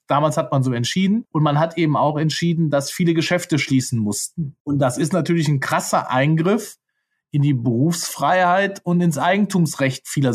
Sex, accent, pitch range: male, German, 140-190 Hz